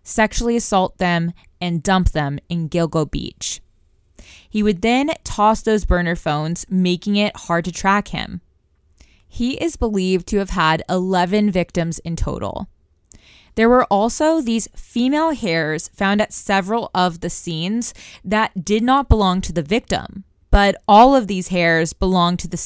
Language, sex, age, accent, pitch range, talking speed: English, female, 20-39, American, 170-220 Hz, 155 wpm